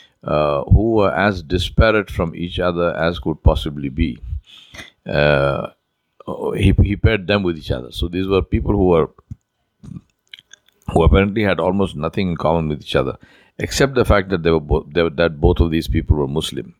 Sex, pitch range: male, 80-95 Hz